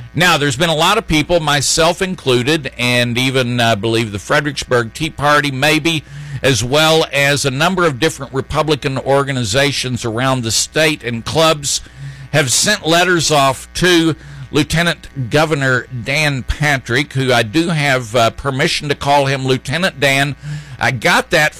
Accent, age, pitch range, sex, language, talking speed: American, 50-69, 120-155 Hz, male, English, 155 wpm